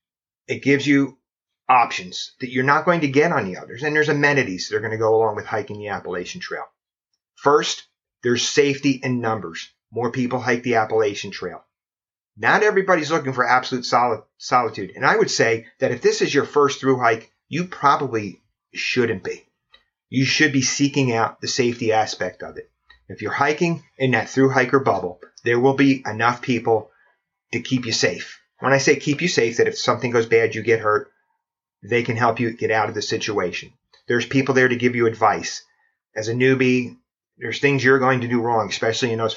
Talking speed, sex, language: 200 wpm, male, English